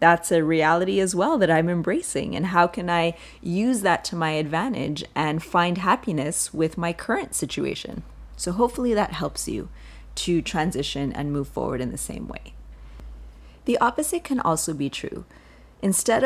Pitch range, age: 150-190 Hz, 30-49